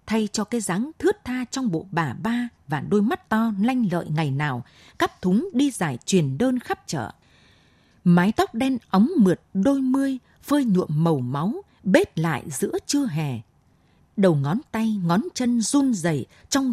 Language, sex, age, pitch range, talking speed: Vietnamese, female, 20-39, 165-230 Hz, 180 wpm